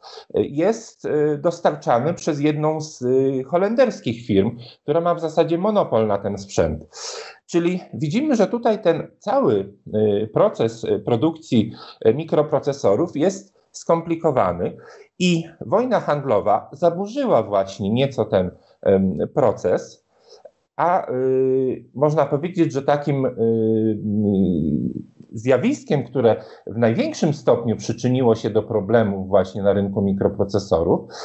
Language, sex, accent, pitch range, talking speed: Polish, male, native, 115-170 Hz, 100 wpm